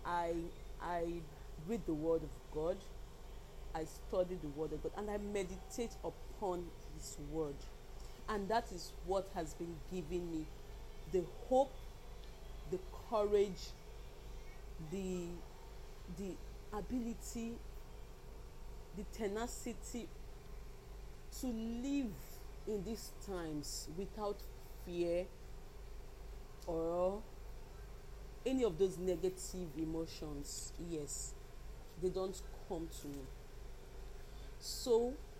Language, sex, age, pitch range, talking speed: English, female, 40-59, 150-200 Hz, 95 wpm